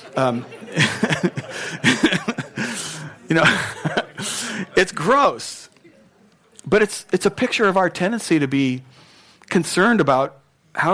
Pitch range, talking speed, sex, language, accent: 110-160 Hz, 100 wpm, male, English, American